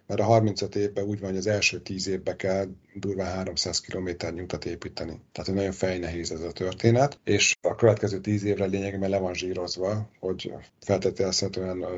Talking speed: 170 wpm